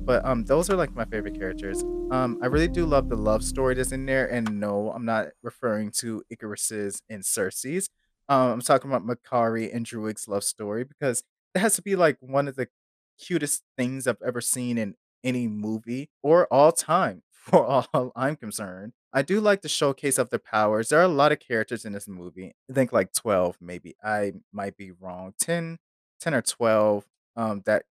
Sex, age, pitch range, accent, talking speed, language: male, 20-39, 105-135 Hz, American, 200 wpm, English